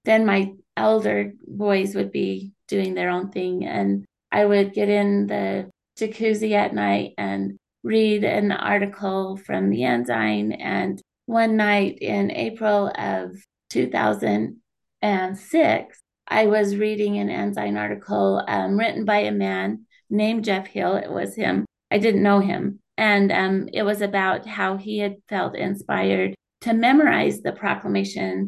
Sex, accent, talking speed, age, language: female, American, 145 wpm, 30-49, English